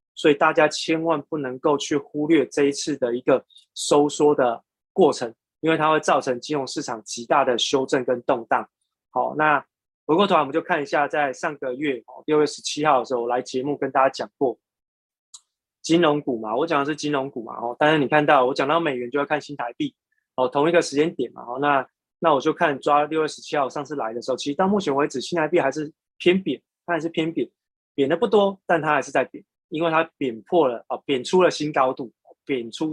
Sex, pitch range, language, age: male, 135-165 Hz, Chinese, 20-39